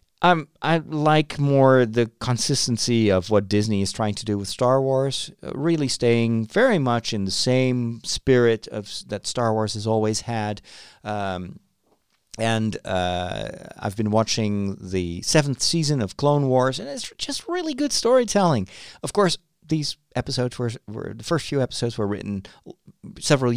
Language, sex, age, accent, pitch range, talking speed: English, male, 40-59, American, 100-135 Hz, 155 wpm